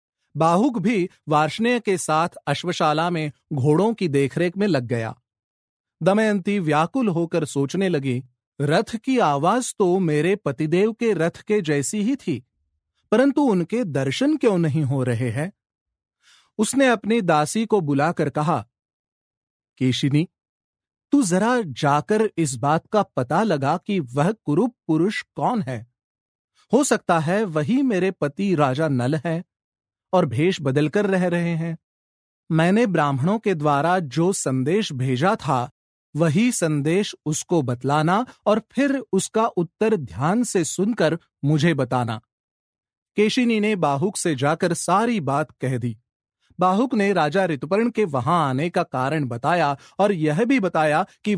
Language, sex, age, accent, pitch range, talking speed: Hindi, male, 40-59, native, 140-205 Hz, 140 wpm